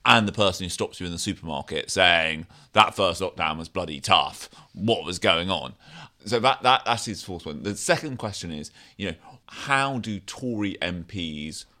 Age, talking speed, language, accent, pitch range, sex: 30-49, 190 wpm, English, British, 90-120 Hz, male